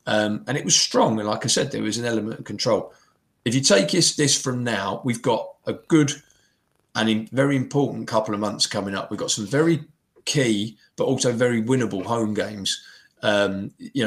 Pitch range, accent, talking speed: 110-135 Hz, British, 200 wpm